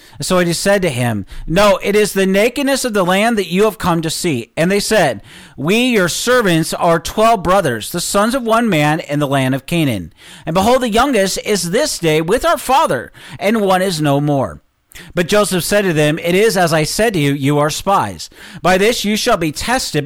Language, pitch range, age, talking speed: English, 150-205 Hz, 40-59, 220 wpm